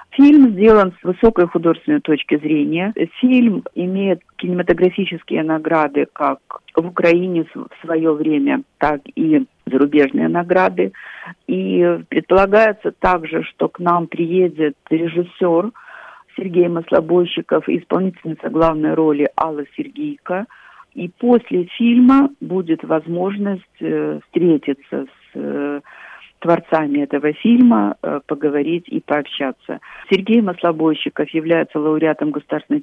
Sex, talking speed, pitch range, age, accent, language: female, 100 wpm, 155-200 Hz, 50-69, native, Ukrainian